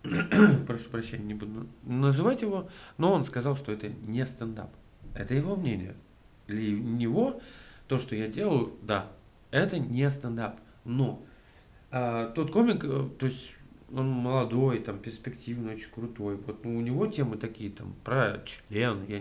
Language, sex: Russian, male